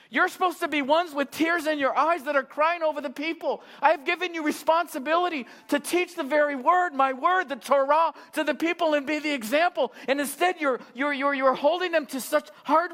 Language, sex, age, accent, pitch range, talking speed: English, male, 50-69, American, 210-310 Hz, 220 wpm